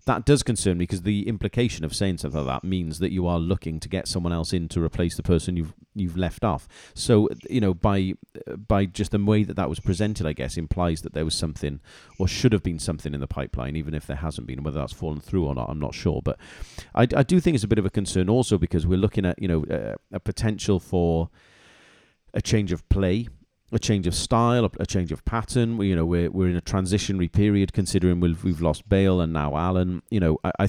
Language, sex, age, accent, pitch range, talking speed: English, male, 40-59, British, 85-105 Hz, 245 wpm